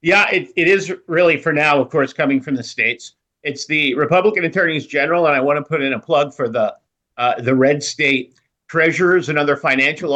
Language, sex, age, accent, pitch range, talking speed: English, male, 50-69, American, 130-170 Hz, 215 wpm